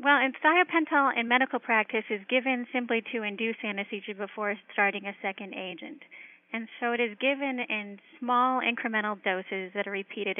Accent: American